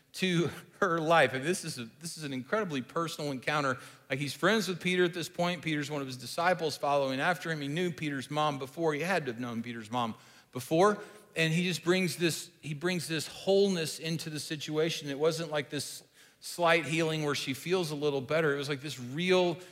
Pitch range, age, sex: 145-180 Hz, 40-59, male